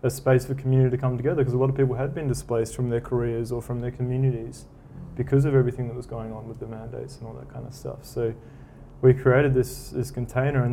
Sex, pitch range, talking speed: male, 115-130 Hz, 250 wpm